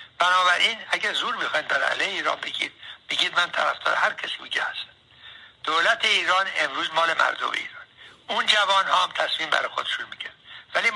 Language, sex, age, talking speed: Persian, male, 60-79, 170 wpm